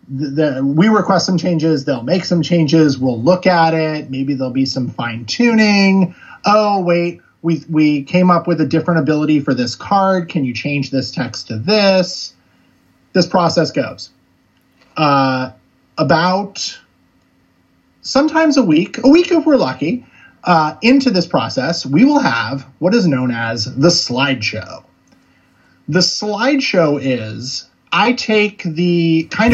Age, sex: 30-49, male